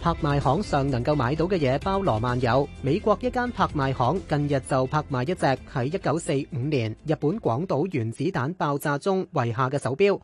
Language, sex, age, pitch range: Chinese, male, 30-49, 130-185 Hz